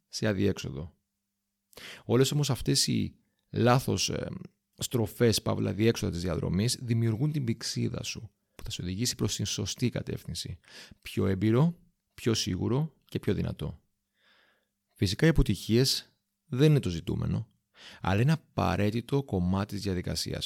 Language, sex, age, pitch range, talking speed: Greek, male, 30-49, 100-125 Hz, 130 wpm